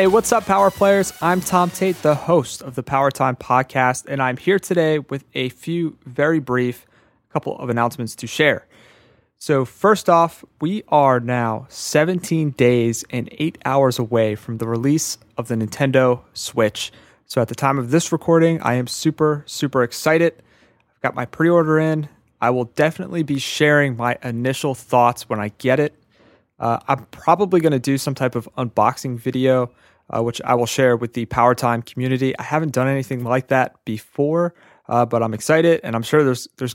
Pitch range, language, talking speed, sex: 120-150 Hz, English, 185 wpm, male